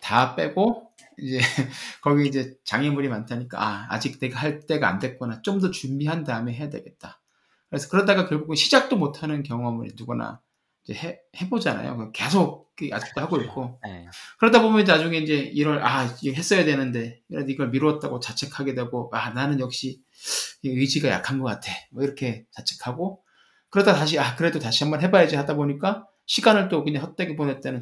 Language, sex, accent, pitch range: Korean, male, native, 125-170 Hz